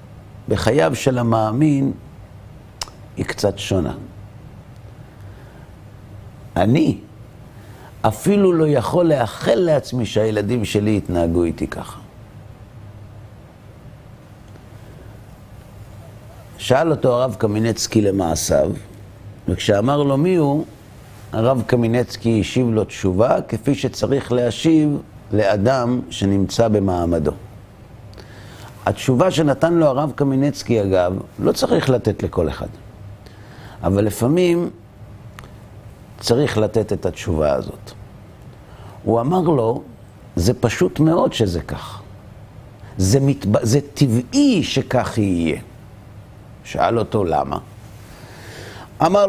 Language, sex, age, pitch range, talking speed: Hebrew, male, 50-69, 105-130 Hz, 90 wpm